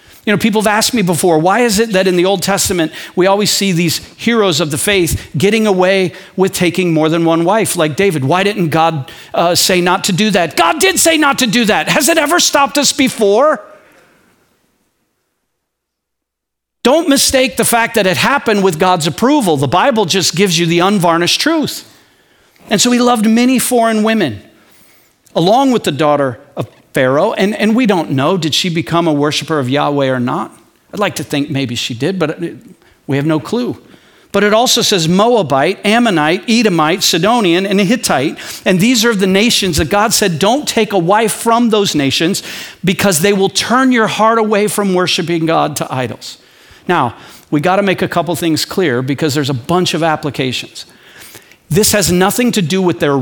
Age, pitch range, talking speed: 50-69, 160-220 Hz, 195 wpm